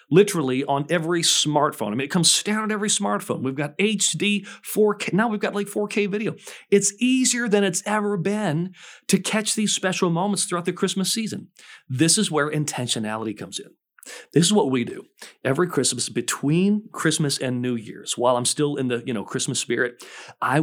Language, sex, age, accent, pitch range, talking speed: English, male, 40-59, American, 120-180 Hz, 190 wpm